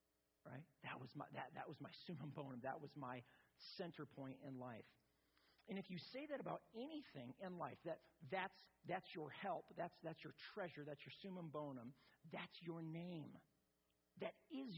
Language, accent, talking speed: English, American, 180 wpm